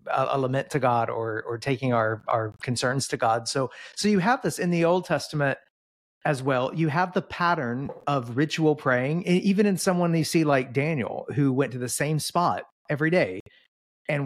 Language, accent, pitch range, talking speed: English, American, 120-160 Hz, 200 wpm